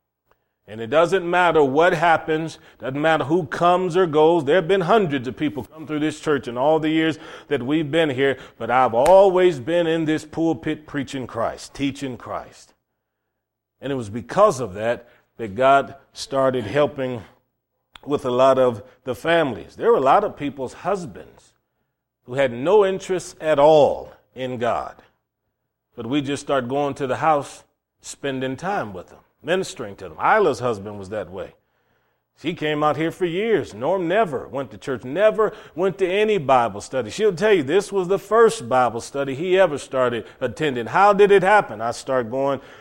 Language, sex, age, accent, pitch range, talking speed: English, male, 40-59, American, 130-165 Hz, 180 wpm